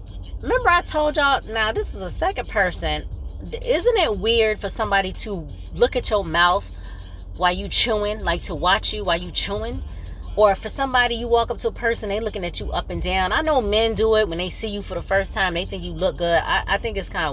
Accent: American